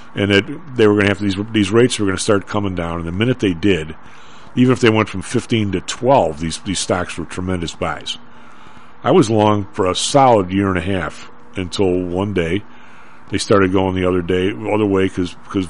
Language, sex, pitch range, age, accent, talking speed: English, male, 90-110 Hz, 50-69, American, 225 wpm